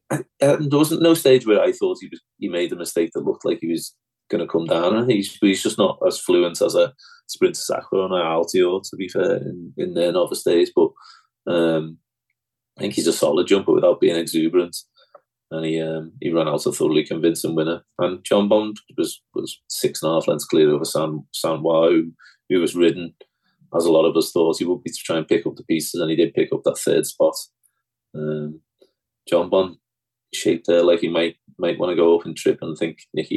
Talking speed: 230 wpm